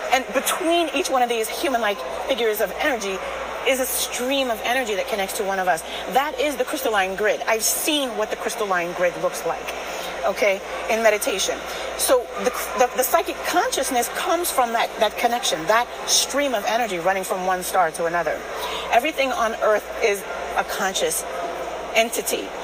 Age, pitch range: 30-49, 180-250 Hz